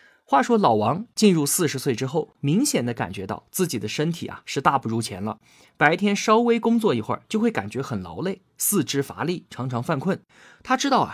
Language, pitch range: Chinese, 130-205 Hz